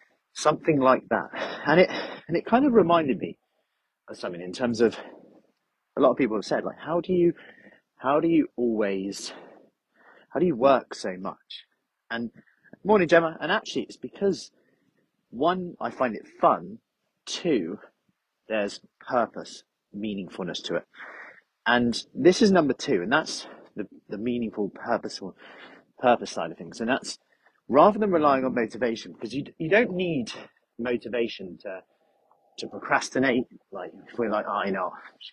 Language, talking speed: English, 160 wpm